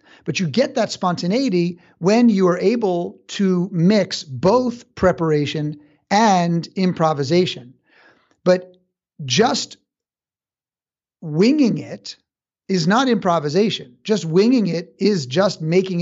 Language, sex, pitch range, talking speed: English, male, 165-195 Hz, 105 wpm